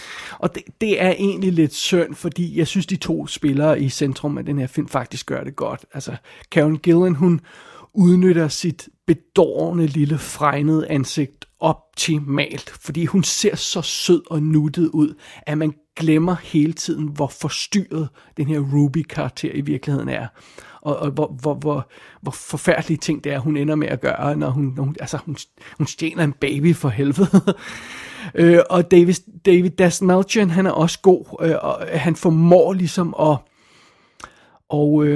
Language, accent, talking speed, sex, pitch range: Danish, native, 165 wpm, male, 150-180 Hz